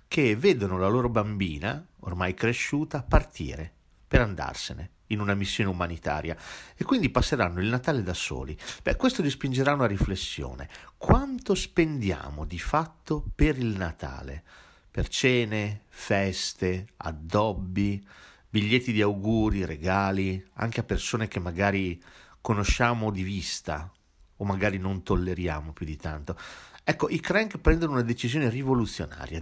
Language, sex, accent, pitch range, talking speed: Italian, male, native, 90-130 Hz, 135 wpm